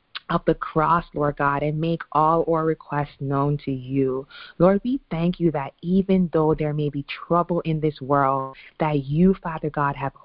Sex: female